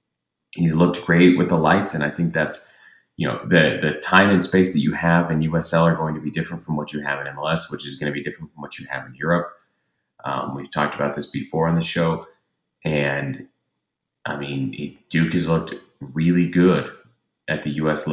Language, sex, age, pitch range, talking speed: English, male, 30-49, 75-85 Hz, 215 wpm